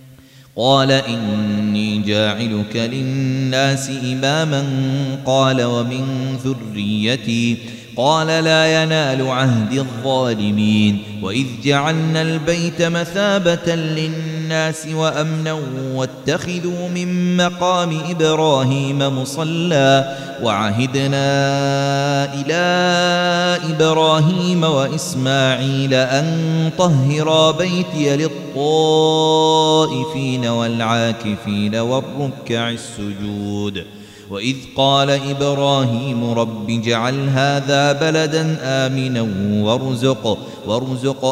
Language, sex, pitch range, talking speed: Arabic, male, 125-175 Hz, 65 wpm